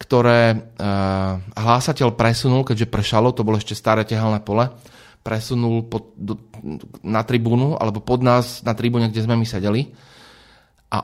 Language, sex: Slovak, male